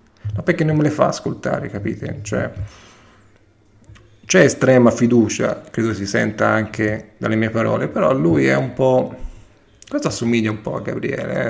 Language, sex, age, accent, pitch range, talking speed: Italian, male, 40-59, native, 105-130 Hz, 160 wpm